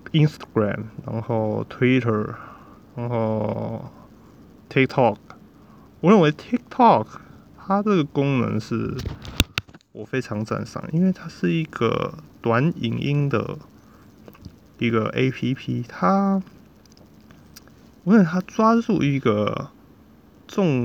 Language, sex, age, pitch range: Chinese, male, 20-39, 115-170 Hz